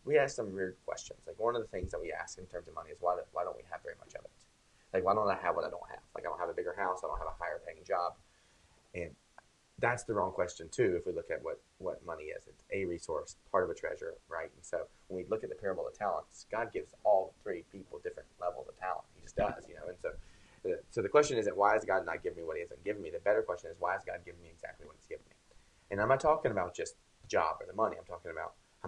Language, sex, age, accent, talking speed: English, male, 30-49, American, 300 wpm